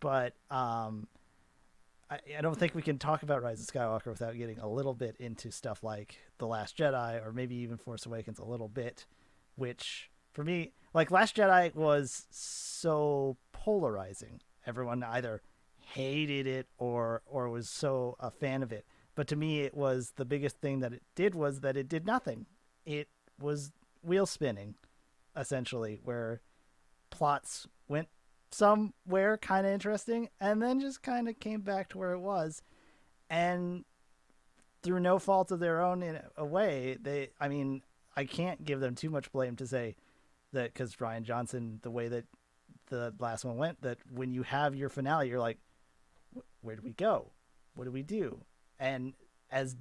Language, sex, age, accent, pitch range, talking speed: English, male, 40-59, American, 115-160 Hz, 170 wpm